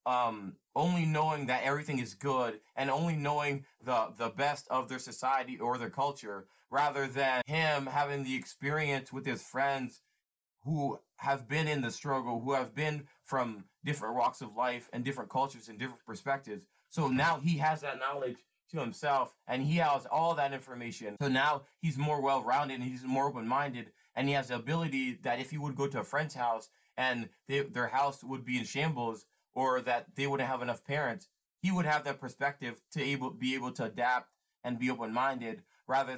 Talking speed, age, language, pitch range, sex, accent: 190 wpm, 20-39, English, 125-150 Hz, male, American